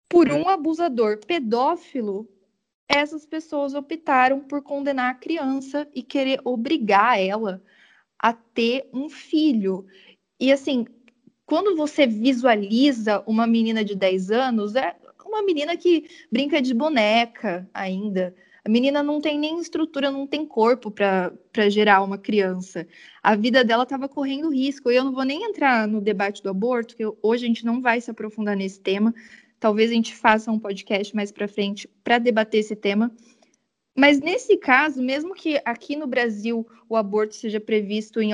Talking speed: 160 wpm